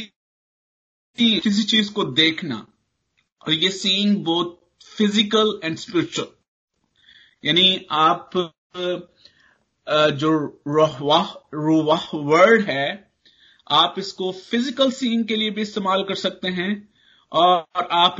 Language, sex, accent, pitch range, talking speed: Hindi, male, native, 140-200 Hz, 100 wpm